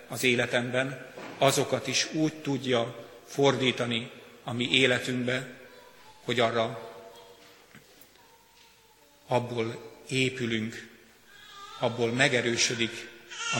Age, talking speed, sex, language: 50-69, 75 wpm, male, Hungarian